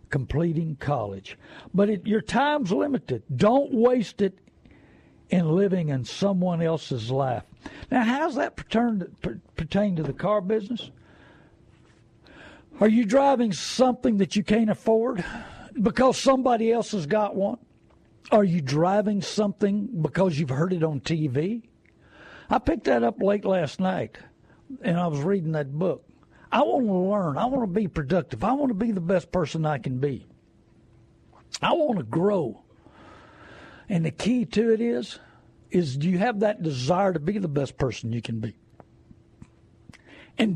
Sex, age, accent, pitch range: male, 60-79, American, 160-220 Hz